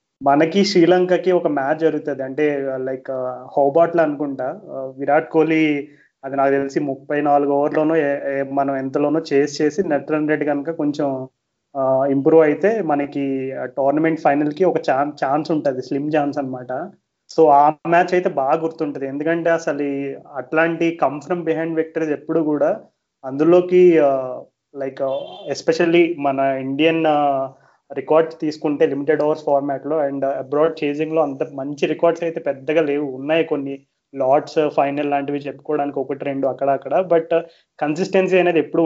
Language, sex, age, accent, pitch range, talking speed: Telugu, male, 30-49, native, 140-160 Hz, 135 wpm